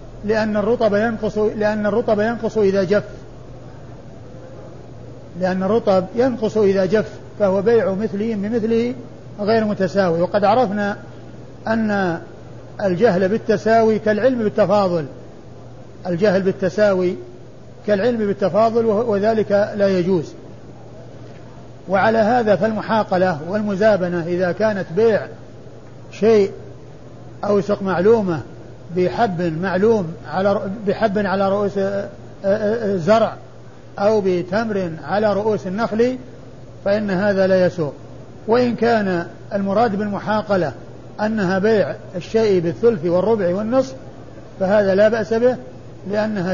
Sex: male